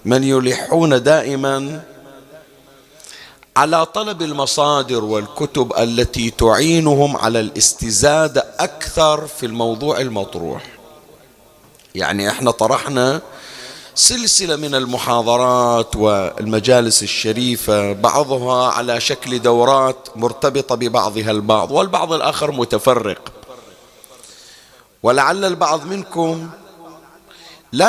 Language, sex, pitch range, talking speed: Arabic, male, 115-150 Hz, 80 wpm